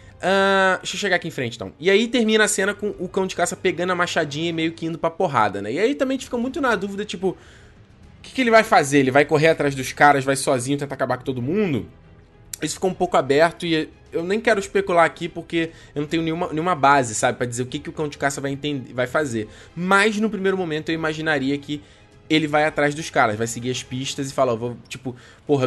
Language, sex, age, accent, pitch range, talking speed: Portuguese, male, 20-39, Brazilian, 125-165 Hz, 255 wpm